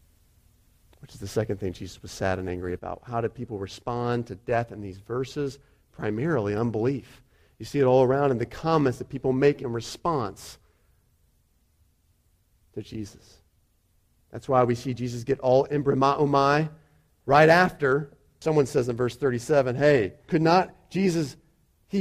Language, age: English, 40-59